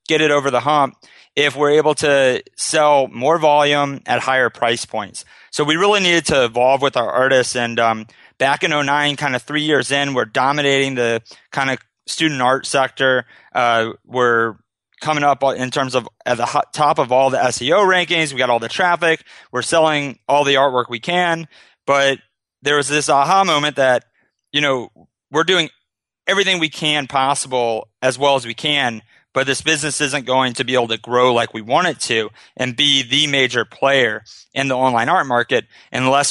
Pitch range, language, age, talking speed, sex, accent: 125-150 Hz, English, 30-49, 190 wpm, male, American